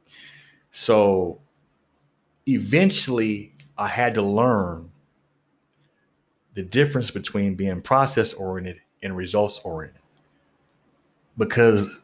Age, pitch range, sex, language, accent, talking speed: 30-49, 100-135 Hz, male, English, American, 70 wpm